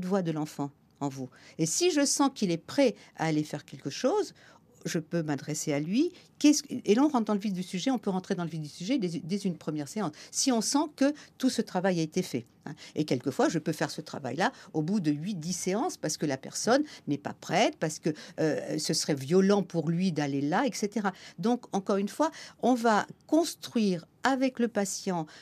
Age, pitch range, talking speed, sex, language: 60-79, 160-225 Hz, 225 wpm, female, French